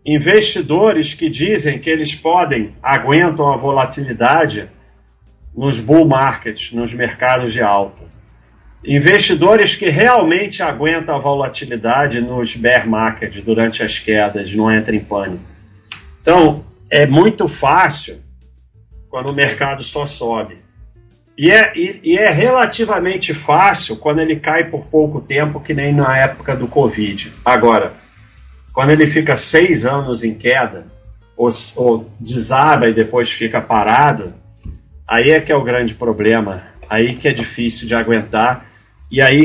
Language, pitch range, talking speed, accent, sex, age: Portuguese, 110-145 Hz, 135 wpm, Brazilian, male, 40-59